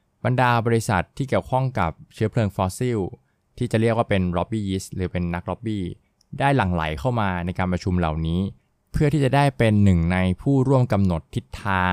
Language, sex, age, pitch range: Thai, male, 20-39, 90-115 Hz